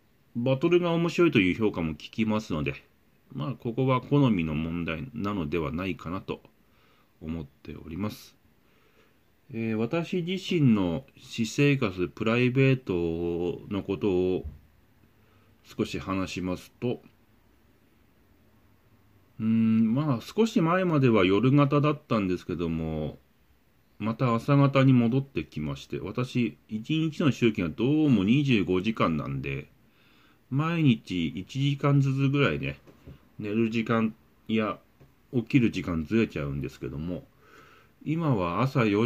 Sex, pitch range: male, 90-130 Hz